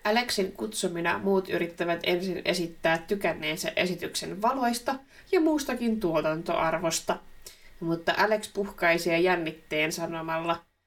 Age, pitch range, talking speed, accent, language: 20-39, 165-210 Hz, 100 wpm, native, Finnish